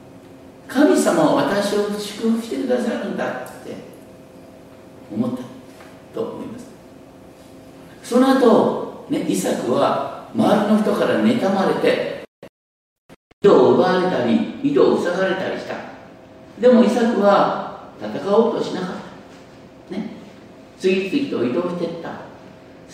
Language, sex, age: Japanese, male, 60-79